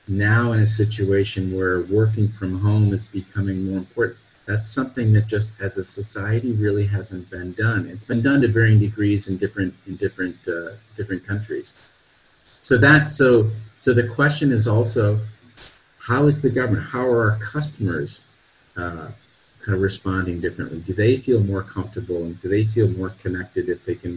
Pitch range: 95-115 Hz